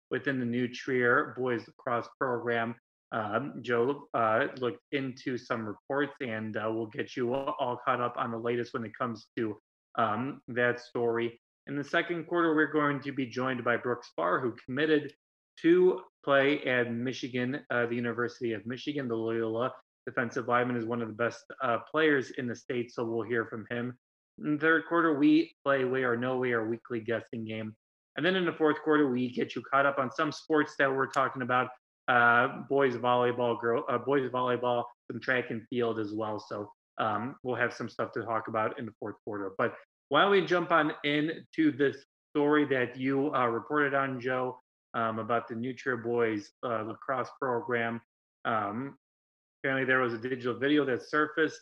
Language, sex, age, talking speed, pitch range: English, male, 30-49, 190 wpm, 115-140 Hz